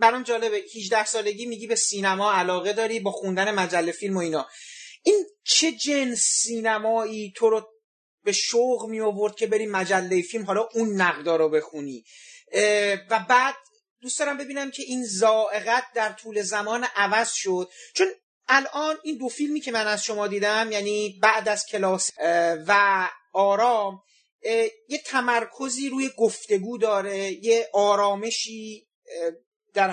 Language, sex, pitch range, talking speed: Persian, male, 195-240 Hz, 140 wpm